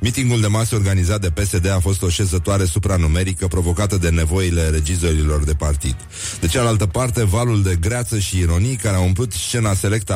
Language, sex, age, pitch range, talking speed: Romanian, male, 30-49, 85-105 Hz, 175 wpm